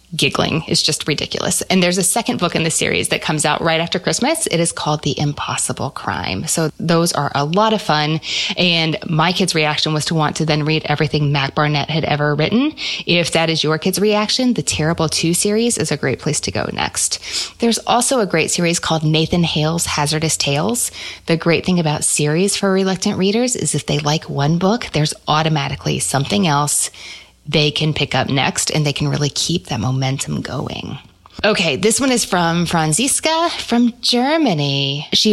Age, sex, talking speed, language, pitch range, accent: 20-39, female, 195 wpm, English, 150-205 Hz, American